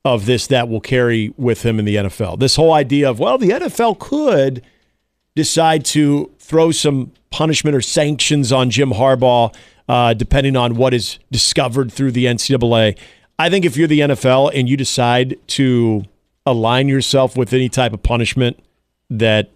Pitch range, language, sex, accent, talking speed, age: 115-150 Hz, English, male, American, 170 wpm, 40-59